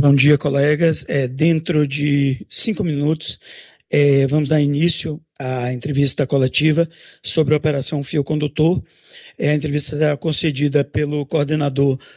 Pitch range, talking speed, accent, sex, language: 145-170 Hz, 135 wpm, Brazilian, male, Portuguese